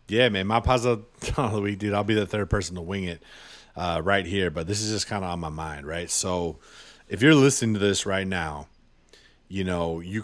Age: 30-49